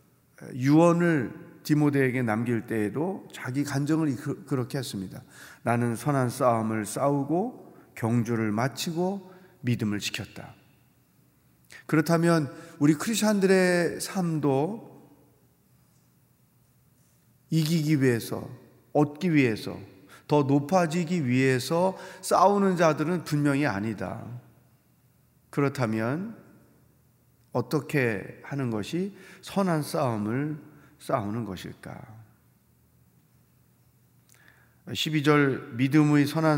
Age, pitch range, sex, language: 40-59, 120-165 Hz, male, Korean